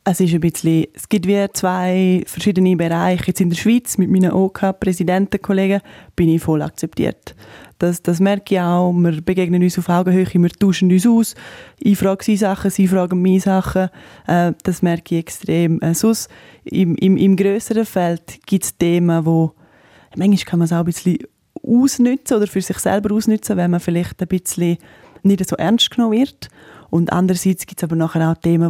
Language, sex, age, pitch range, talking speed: German, female, 20-39, 170-195 Hz, 180 wpm